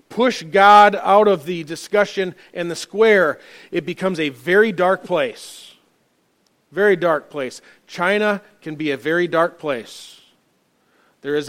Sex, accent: male, American